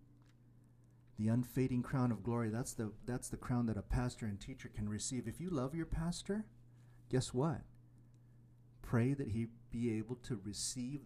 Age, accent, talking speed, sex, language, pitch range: 40-59, American, 165 wpm, male, English, 115-130 Hz